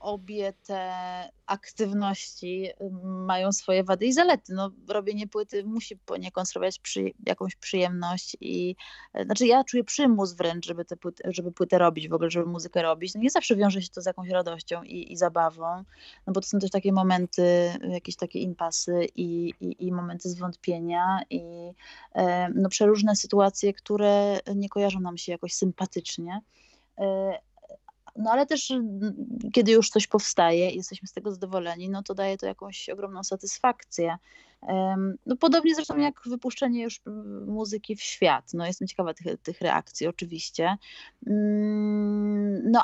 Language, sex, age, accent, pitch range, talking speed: Polish, female, 20-39, native, 180-215 Hz, 145 wpm